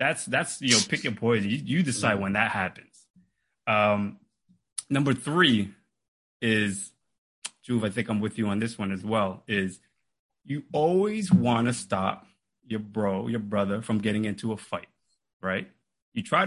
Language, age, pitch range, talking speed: English, 30-49, 105-145 Hz, 170 wpm